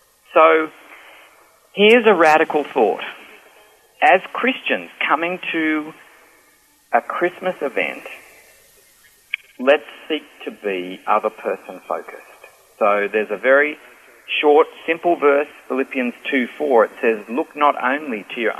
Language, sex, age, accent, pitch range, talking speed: English, male, 40-59, Australian, 130-185 Hz, 110 wpm